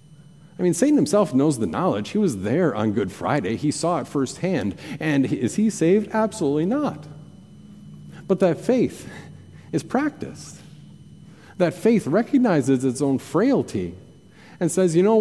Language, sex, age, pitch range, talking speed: English, male, 40-59, 140-190 Hz, 150 wpm